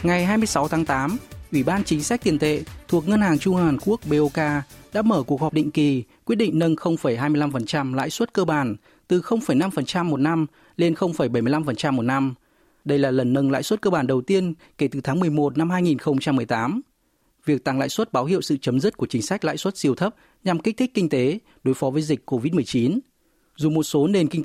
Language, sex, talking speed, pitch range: Vietnamese, male, 210 wpm, 135-180 Hz